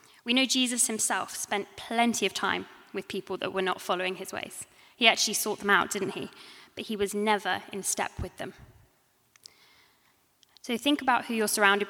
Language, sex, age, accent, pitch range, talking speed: English, female, 10-29, British, 195-230 Hz, 185 wpm